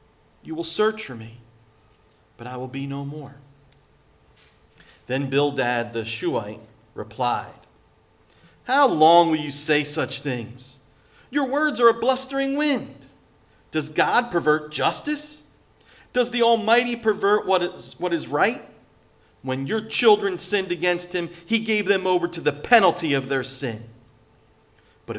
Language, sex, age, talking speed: English, male, 40-59, 140 wpm